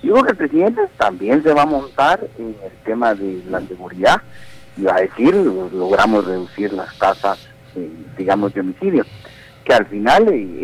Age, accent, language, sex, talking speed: 50-69, Mexican, Spanish, male, 180 wpm